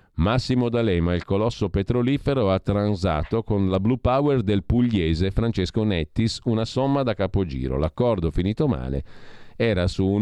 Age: 40-59